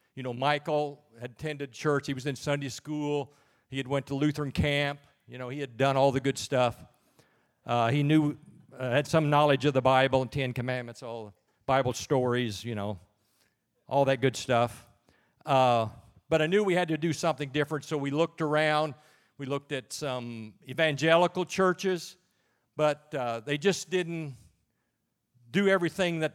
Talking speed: 175 wpm